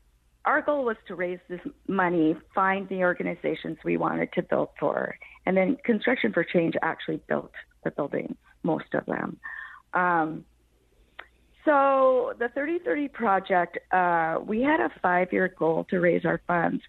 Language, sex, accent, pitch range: English, female, American, 165-210 Hz